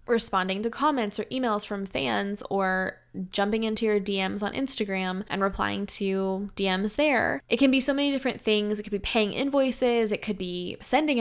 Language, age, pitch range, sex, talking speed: English, 10-29, 195-230 Hz, female, 185 wpm